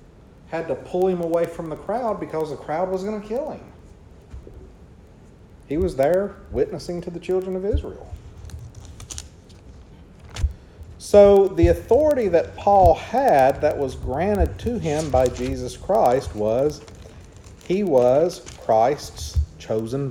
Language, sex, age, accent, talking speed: English, male, 40-59, American, 130 wpm